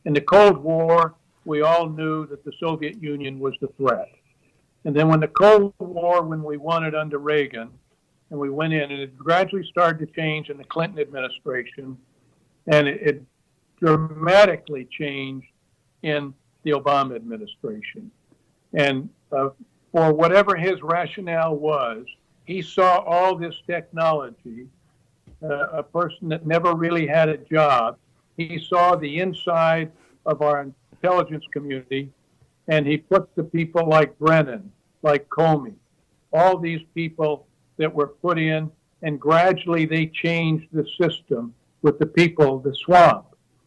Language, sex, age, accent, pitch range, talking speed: English, male, 60-79, American, 145-170 Hz, 145 wpm